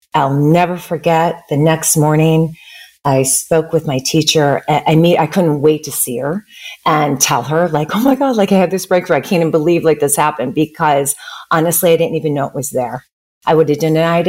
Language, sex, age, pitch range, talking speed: English, female, 40-59, 150-175 Hz, 220 wpm